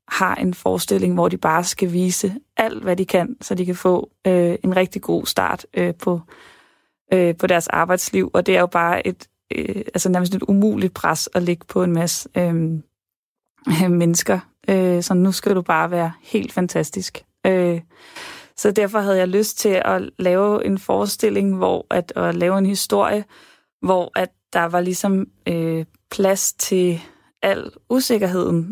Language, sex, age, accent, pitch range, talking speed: Danish, female, 30-49, native, 175-200 Hz, 170 wpm